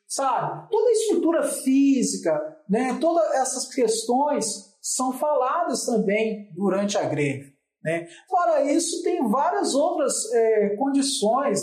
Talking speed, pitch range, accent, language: 120 wpm, 205-290 Hz, Brazilian, Portuguese